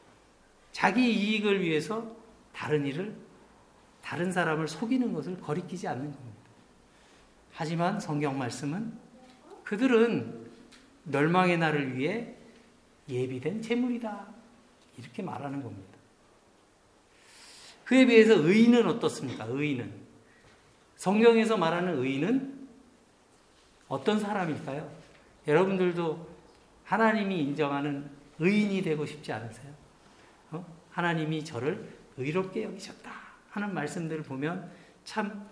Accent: native